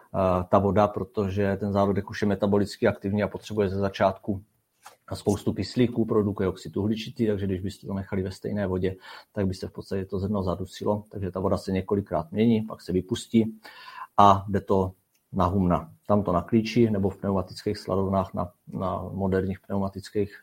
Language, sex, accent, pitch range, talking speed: Czech, male, native, 95-105 Hz, 170 wpm